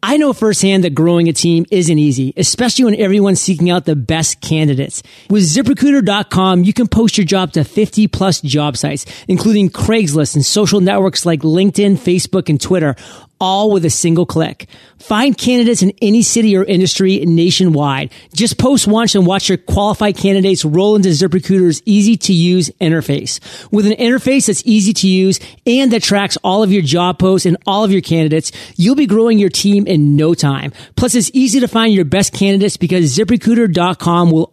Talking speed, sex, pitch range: 180 wpm, male, 165-210 Hz